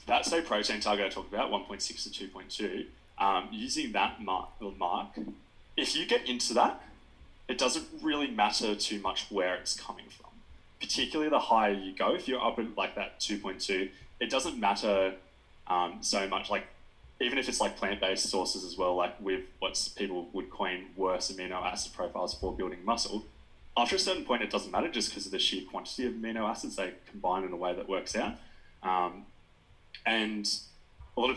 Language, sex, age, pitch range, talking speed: English, male, 20-39, 95-110 Hz, 190 wpm